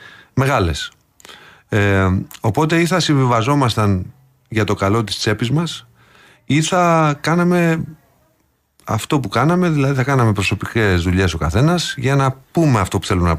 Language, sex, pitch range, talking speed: Greek, male, 95-145 Hz, 145 wpm